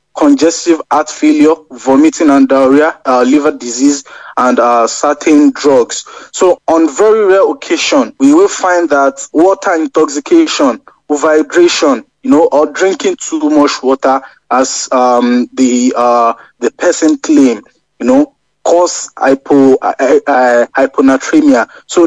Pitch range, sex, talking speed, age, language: 135-215 Hz, male, 130 wpm, 20-39, English